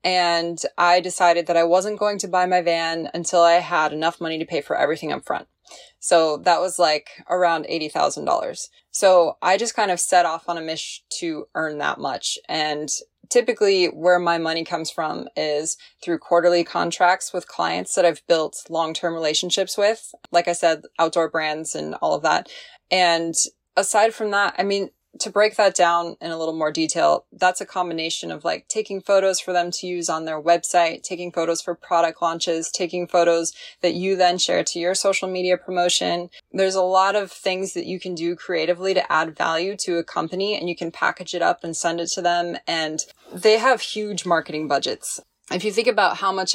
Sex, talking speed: female, 200 wpm